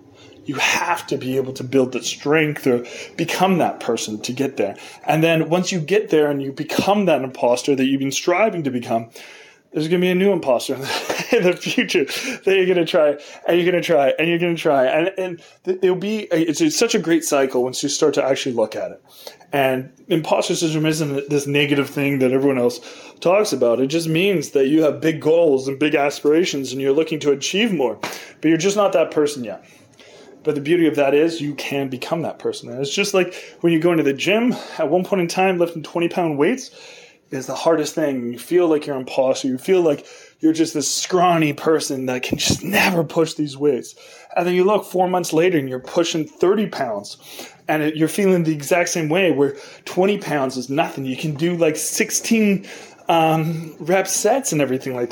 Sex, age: male, 20-39